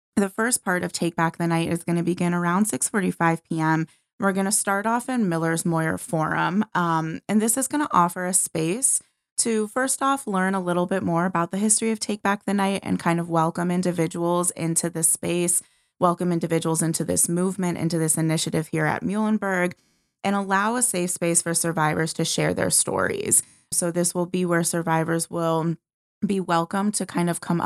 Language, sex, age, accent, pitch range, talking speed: English, female, 20-39, American, 165-200 Hz, 200 wpm